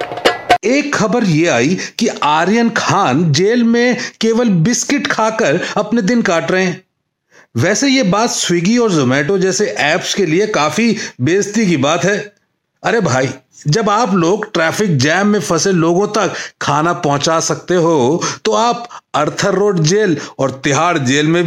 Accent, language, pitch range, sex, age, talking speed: native, Hindi, 165-220 Hz, male, 40-59, 155 wpm